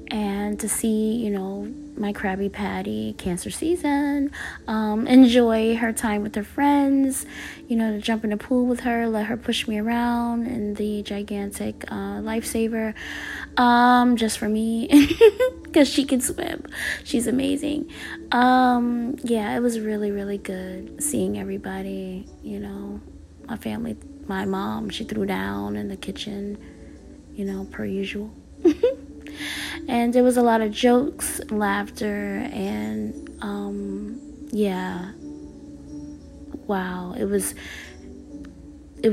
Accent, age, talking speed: American, 20-39, 130 wpm